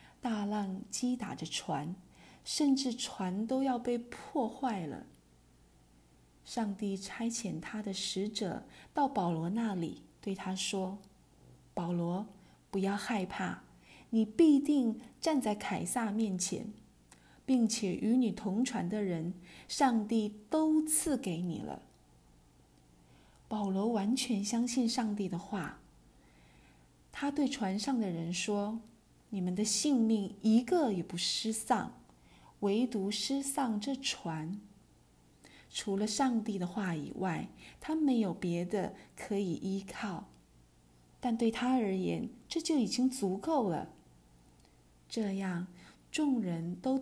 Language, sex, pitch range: Chinese, female, 185-250 Hz